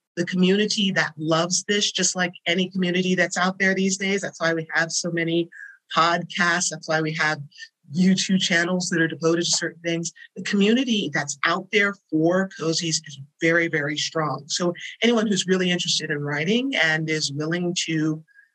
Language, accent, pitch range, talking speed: English, American, 160-200 Hz, 180 wpm